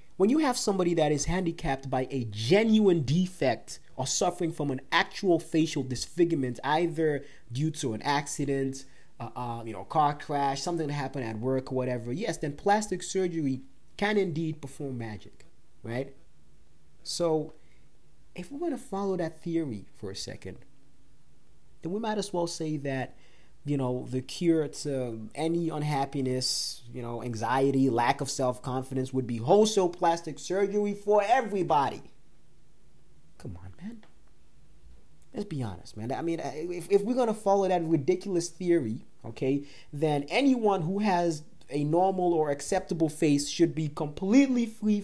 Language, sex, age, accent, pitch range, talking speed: English, male, 30-49, American, 135-185 Hz, 155 wpm